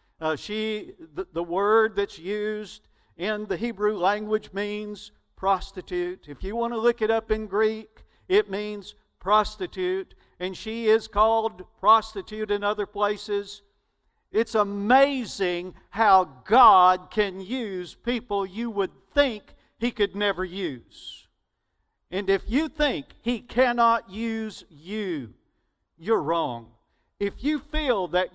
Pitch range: 160-220 Hz